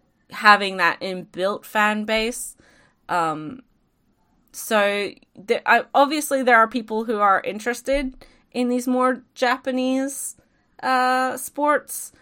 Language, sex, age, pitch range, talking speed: English, female, 20-39, 180-255 Hz, 100 wpm